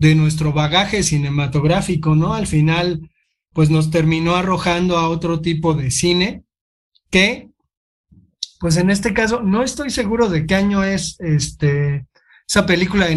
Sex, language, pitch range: male, Spanish, 160-200 Hz